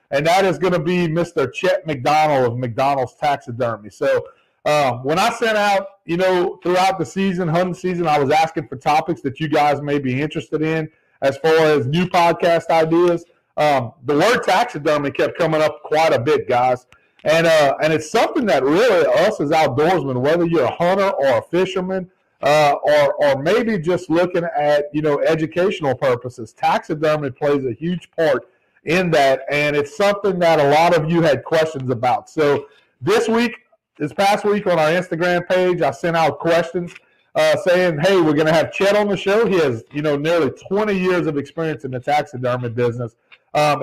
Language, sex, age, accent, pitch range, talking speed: English, male, 40-59, American, 145-185 Hz, 190 wpm